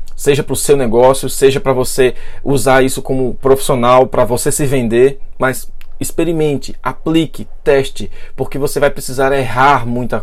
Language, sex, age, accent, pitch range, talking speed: Portuguese, male, 20-39, Brazilian, 130-165 Hz, 155 wpm